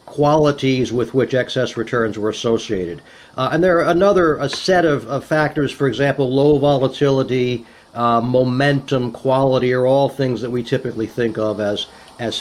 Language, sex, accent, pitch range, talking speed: English, male, American, 120-145 Hz, 165 wpm